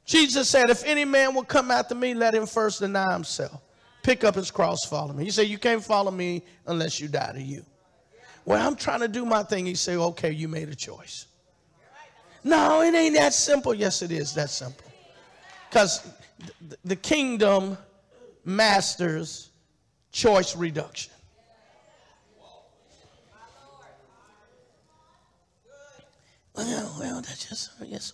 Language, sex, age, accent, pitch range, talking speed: English, male, 50-69, American, 160-230 Hz, 145 wpm